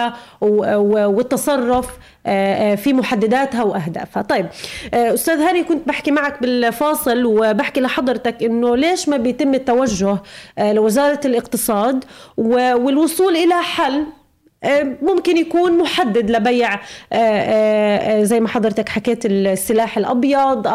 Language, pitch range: Arabic, 215-275 Hz